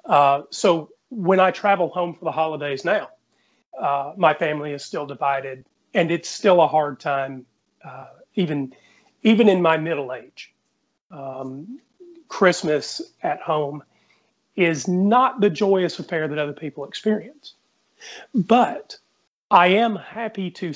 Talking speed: 135 wpm